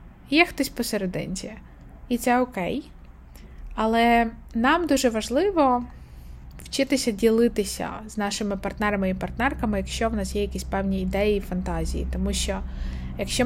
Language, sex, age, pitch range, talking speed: Ukrainian, female, 20-39, 195-235 Hz, 125 wpm